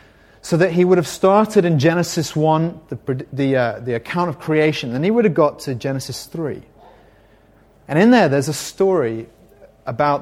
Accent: British